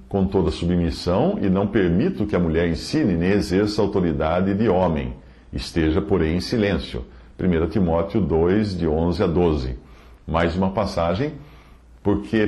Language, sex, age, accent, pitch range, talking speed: English, male, 50-69, Brazilian, 75-105 Hz, 145 wpm